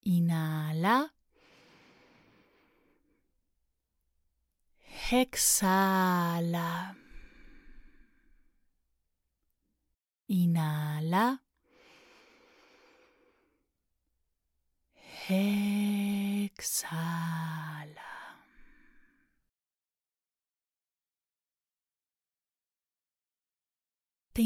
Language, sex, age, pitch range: Spanish, female, 30-49, 185-235 Hz